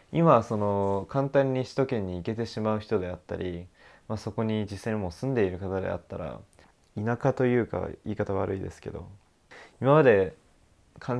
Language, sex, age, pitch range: Japanese, male, 20-39, 95-115 Hz